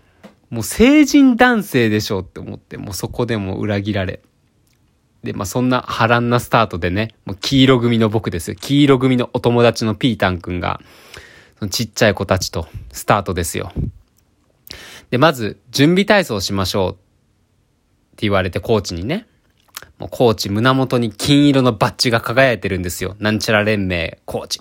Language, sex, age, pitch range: Japanese, male, 20-39, 100-135 Hz